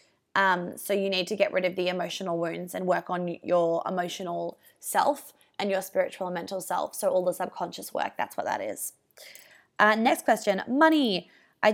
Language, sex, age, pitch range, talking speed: English, female, 20-39, 180-220 Hz, 190 wpm